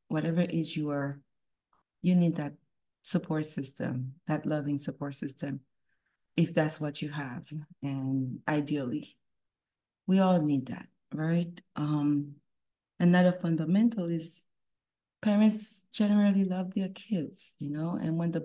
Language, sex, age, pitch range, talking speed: English, female, 30-49, 145-180 Hz, 125 wpm